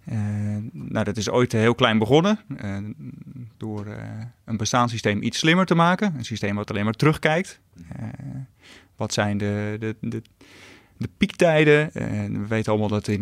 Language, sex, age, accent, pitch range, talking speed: Dutch, male, 30-49, Dutch, 105-125 Hz, 170 wpm